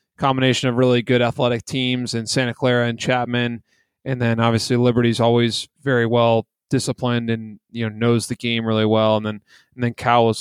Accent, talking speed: American, 190 wpm